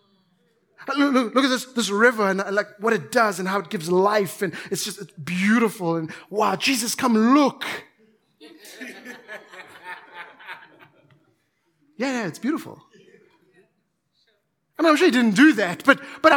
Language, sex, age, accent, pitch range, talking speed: English, male, 30-49, South African, 175-230 Hz, 150 wpm